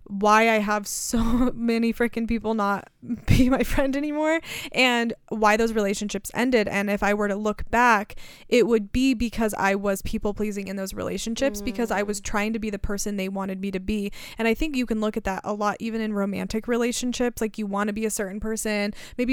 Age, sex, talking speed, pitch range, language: 20-39, female, 220 wpm, 200-230 Hz, English